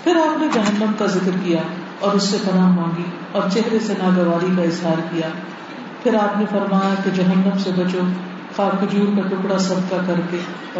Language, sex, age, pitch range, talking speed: Urdu, female, 50-69, 185-220 Hz, 190 wpm